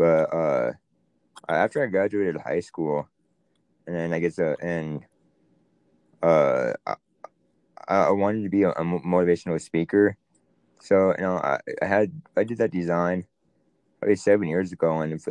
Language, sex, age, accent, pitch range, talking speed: English, male, 20-39, American, 80-90 Hz, 145 wpm